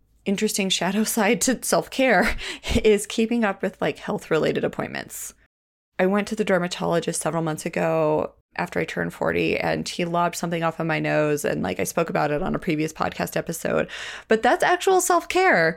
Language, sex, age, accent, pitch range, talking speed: English, female, 30-49, American, 175-220 Hz, 180 wpm